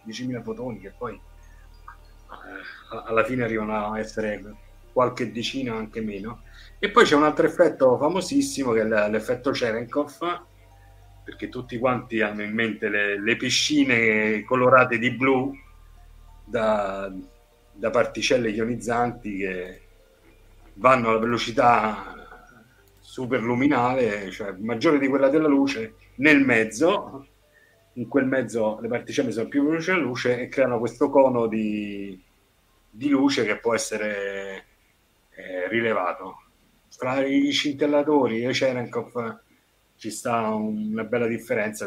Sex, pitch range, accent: male, 100-125 Hz, native